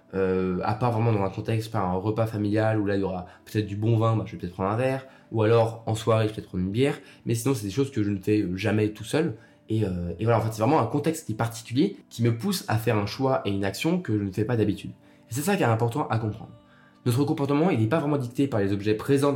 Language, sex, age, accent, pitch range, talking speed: French, male, 20-39, French, 105-135 Hz, 300 wpm